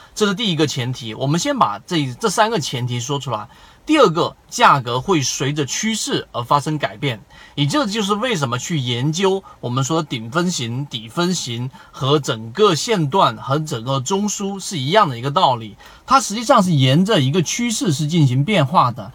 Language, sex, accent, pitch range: Chinese, male, native, 135-185 Hz